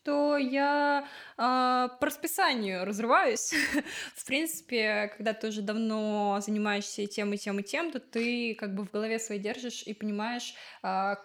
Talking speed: 145 wpm